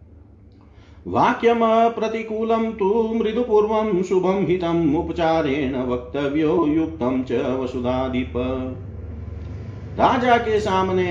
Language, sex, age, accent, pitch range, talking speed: Hindi, male, 40-59, native, 130-185 Hz, 70 wpm